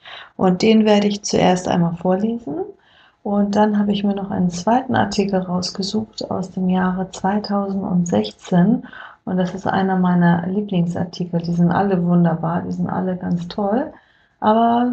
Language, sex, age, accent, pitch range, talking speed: German, female, 30-49, German, 180-215 Hz, 150 wpm